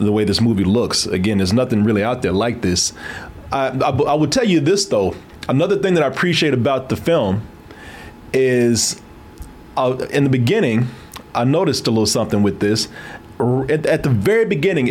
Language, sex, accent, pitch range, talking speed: English, male, American, 110-145 Hz, 185 wpm